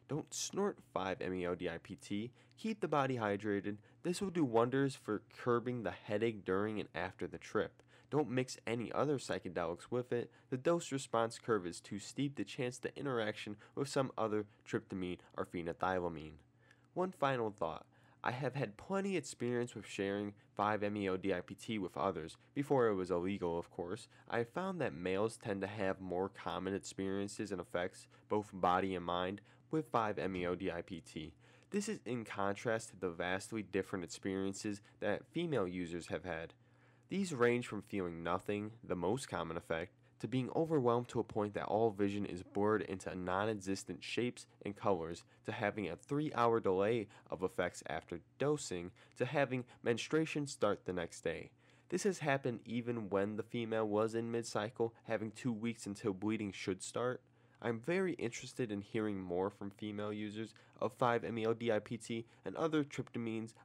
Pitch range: 95-125 Hz